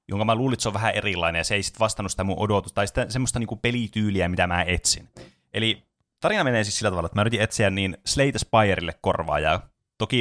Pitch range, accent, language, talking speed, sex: 85-115 Hz, native, Finnish, 225 wpm, male